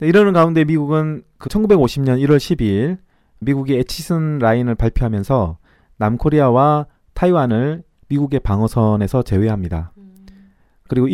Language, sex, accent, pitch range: Korean, male, native, 110-155 Hz